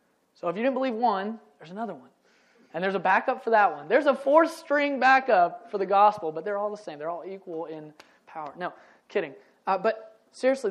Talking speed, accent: 220 wpm, American